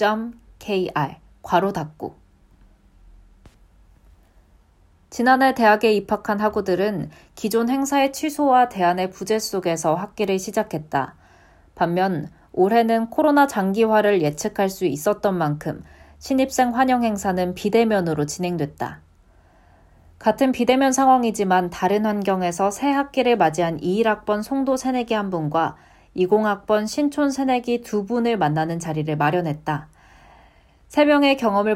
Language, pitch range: Korean, 155-230 Hz